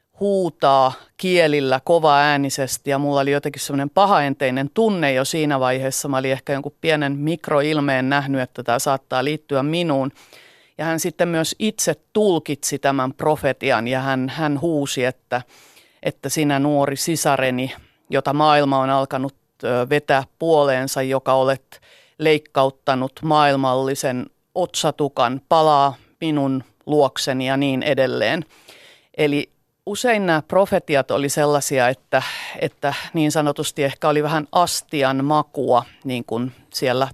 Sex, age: female, 30-49